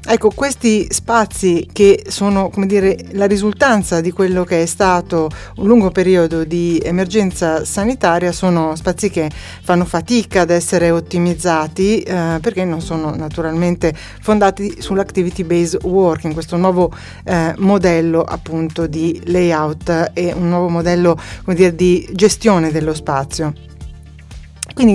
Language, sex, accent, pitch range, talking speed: Italian, female, native, 170-215 Hz, 130 wpm